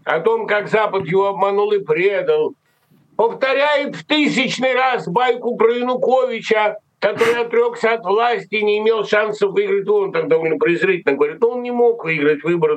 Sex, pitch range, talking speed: male, 175-280 Hz, 165 wpm